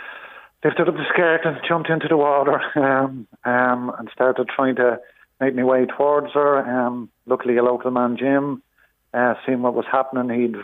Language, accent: English, Irish